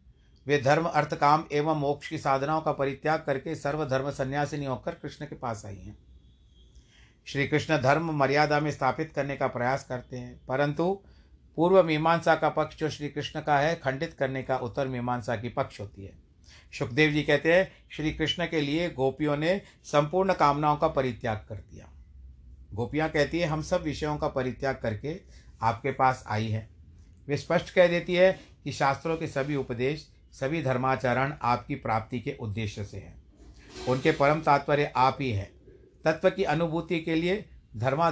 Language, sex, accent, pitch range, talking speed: Hindi, male, native, 100-155 Hz, 170 wpm